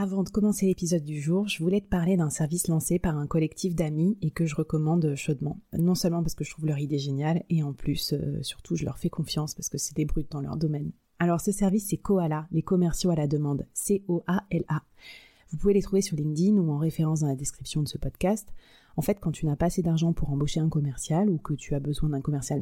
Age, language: 30-49, French